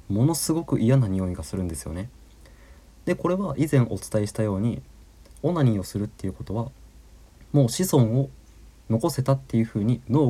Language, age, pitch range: Japanese, 20-39, 105-135 Hz